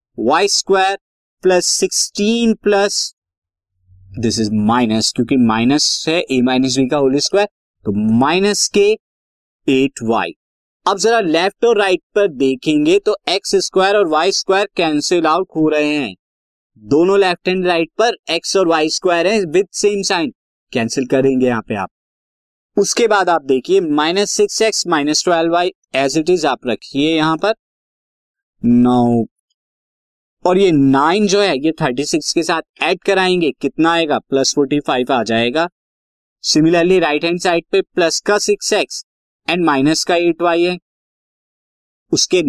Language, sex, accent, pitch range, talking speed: Hindi, male, native, 135-200 Hz, 145 wpm